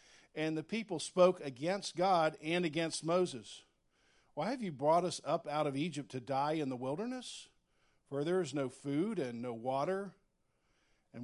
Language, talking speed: English, 170 wpm